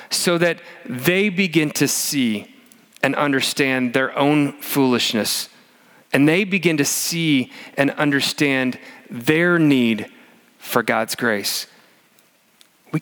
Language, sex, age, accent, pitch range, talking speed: English, male, 40-59, American, 140-180 Hz, 110 wpm